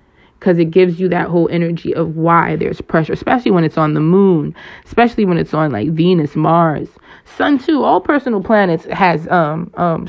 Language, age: English, 20-39